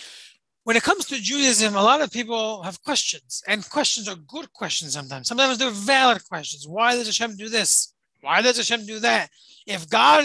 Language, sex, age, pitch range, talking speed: English, male, 30-49, 185-250 Hz, 195 wpm